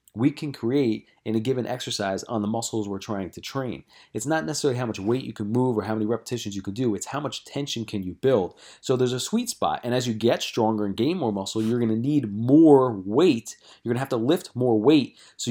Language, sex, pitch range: English, male, 105-140 Hz